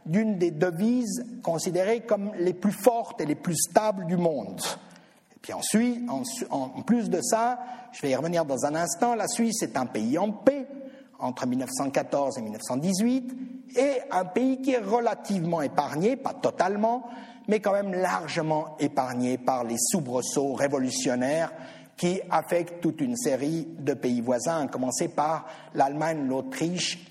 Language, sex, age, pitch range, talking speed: French, male, 50-69, 165-235 Hz, 155 wpm